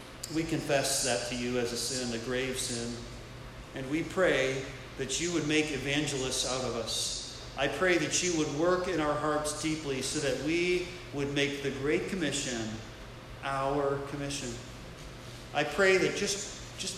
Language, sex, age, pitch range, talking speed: English, male, 40-59, 125-160 Hz, 165 wpm